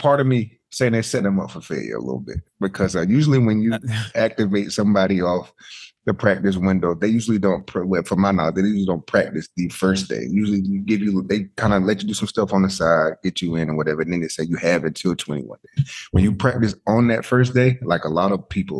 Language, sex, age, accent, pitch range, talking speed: English, male, 30-49, American, 90-110 Hz, 250 wpm